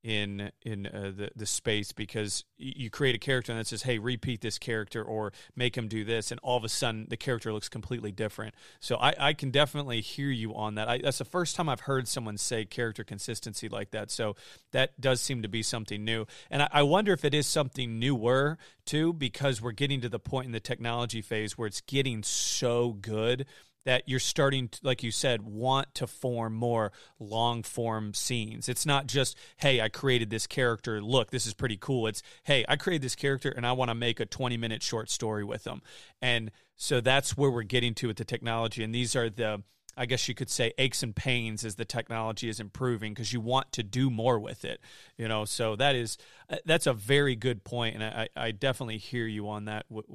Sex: male